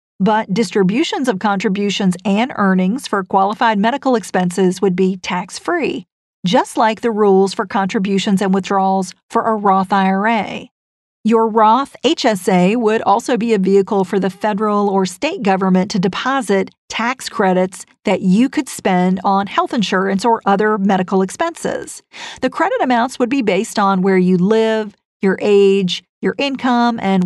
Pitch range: 190-235 Hz